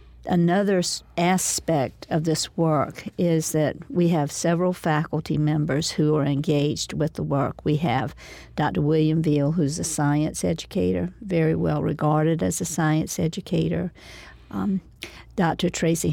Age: 50-69